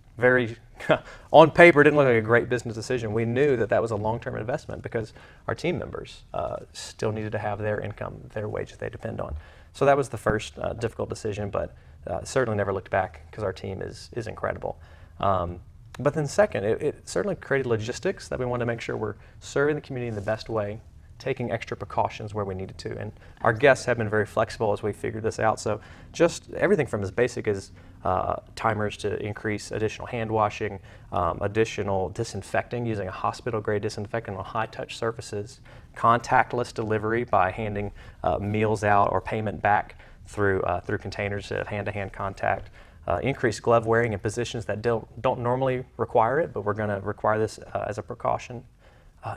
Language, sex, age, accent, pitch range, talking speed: English, male, 30-49, American, 100-120 Hz, 200 wpm